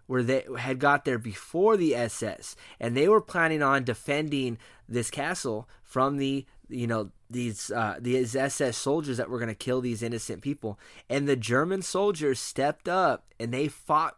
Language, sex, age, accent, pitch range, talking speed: English, male, 20-39, American, 115-145 Hz, 175 wpm